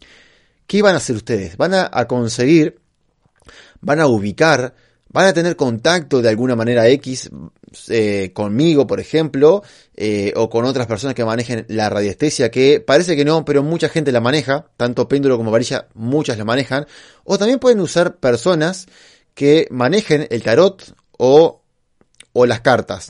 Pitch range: 115-155 Hz